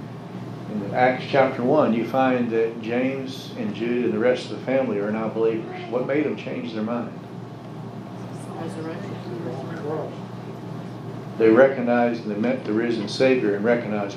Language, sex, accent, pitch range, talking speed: English, male, American, 110-135 Hz, 145 wpm